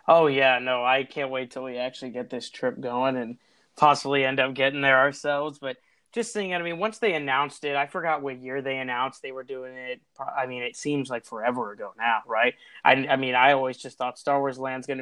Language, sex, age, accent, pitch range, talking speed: English, male, 20-39, American, 130-150 Hz, 240 wpm